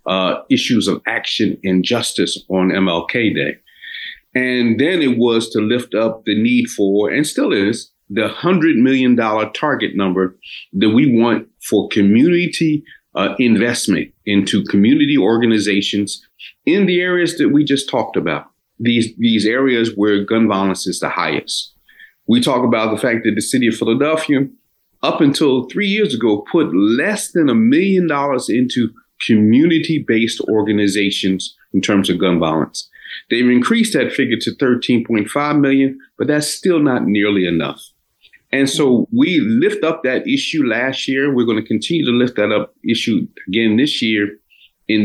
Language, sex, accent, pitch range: English, male, American, 105-160 Hz